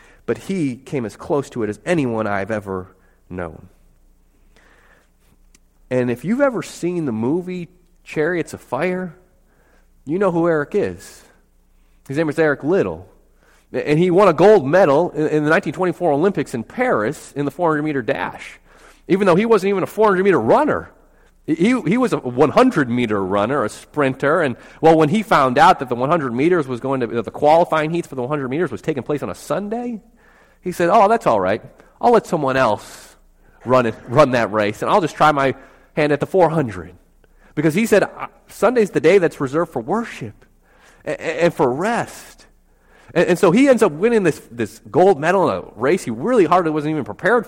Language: English